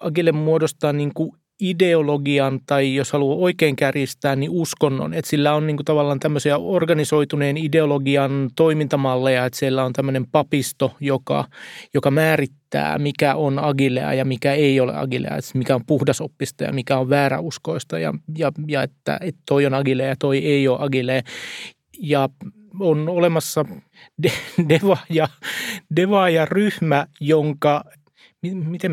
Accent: native